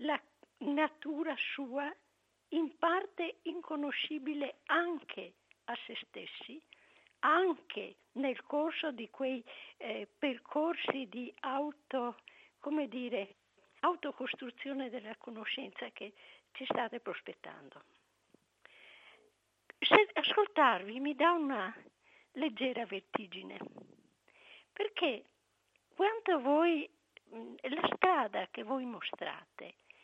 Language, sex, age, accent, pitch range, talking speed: Italian, female, 50-69, native, 260-330 Hz, 85 wpm